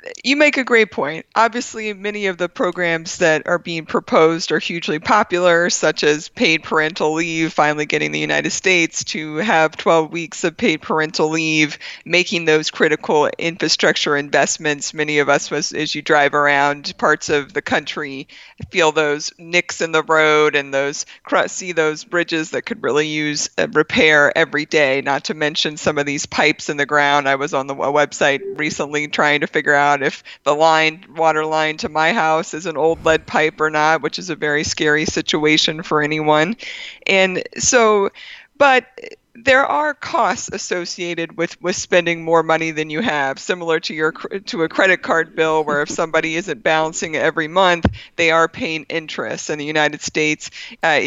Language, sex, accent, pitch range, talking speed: English, female, American, 150-175 Hz, 180 wpm